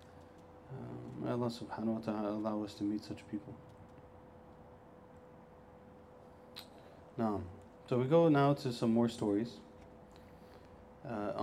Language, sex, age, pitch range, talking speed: English, male, 30-49, 100-120 Hz, 115 wpm